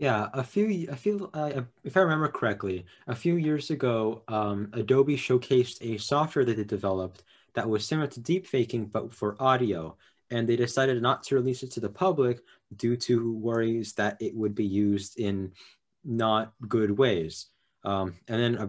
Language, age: English, 20-39